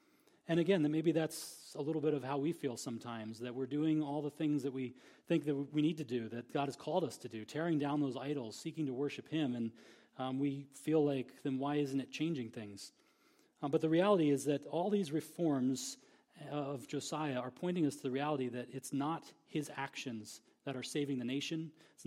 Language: English